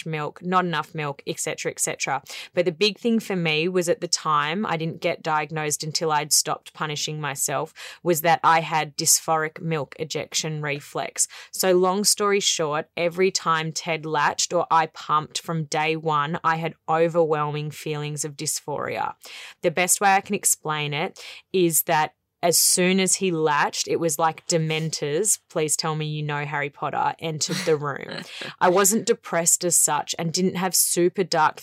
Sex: female